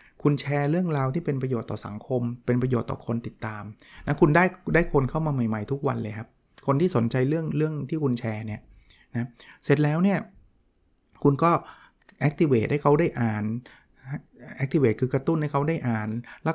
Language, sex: Thai, male